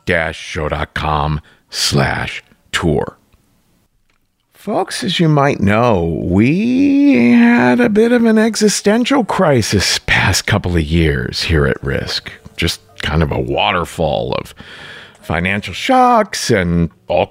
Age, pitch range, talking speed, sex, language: 50-69, 95-140 Hz, 115 wpm, male, English